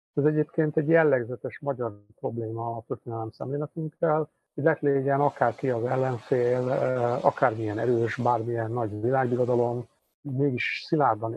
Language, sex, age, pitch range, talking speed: Hungarian, male, 50-69, 115-140 Hz, 115 wpm